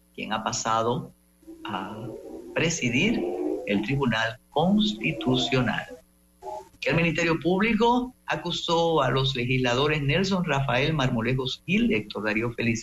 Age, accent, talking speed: 50-69, American, 105 wpm